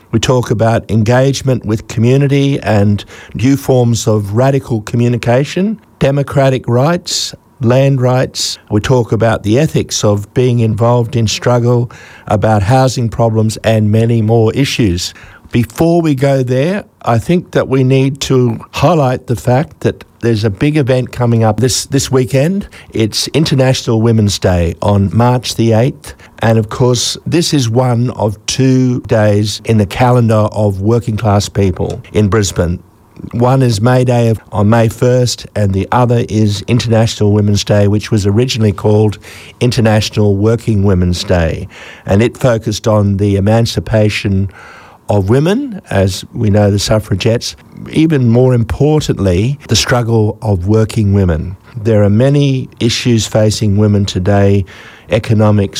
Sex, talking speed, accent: male, 145 wpm, Australian